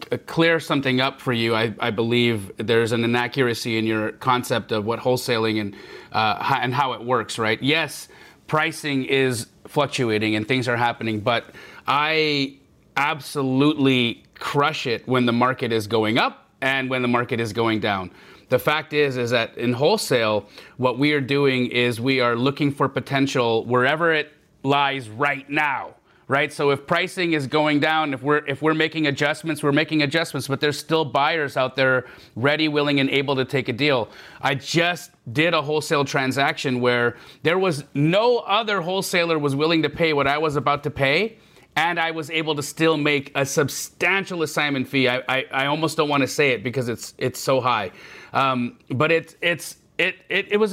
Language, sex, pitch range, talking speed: English, male, 130-160 Hz, 185 wpm